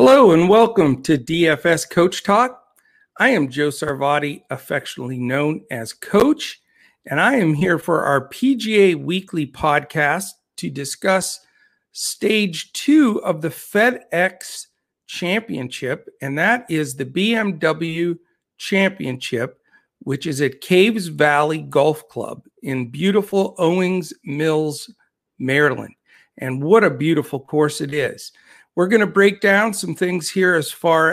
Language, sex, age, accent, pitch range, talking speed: English, male, 50-69, American, 145-195 Hz, 130 wpm